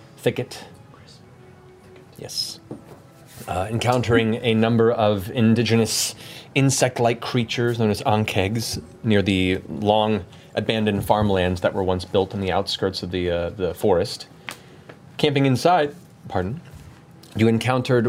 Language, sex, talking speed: English, male, 115 wpm